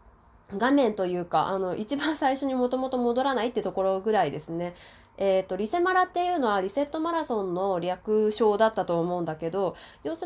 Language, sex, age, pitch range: Japanese, female, 20-39, 180-260 Hz